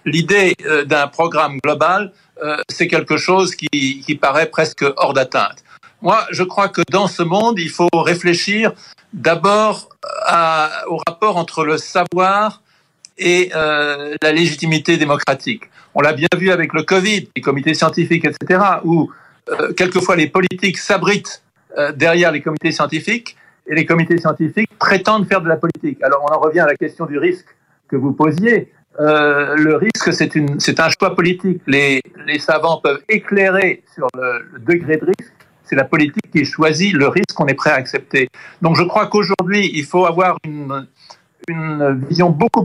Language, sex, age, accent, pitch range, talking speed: French, male, 60-79, French, 155-185 Hz, 170 wpm